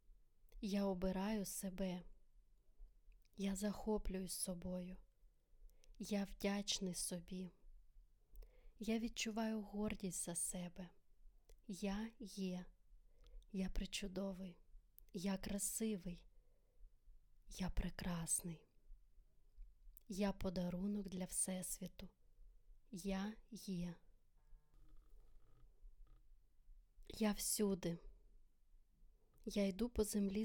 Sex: female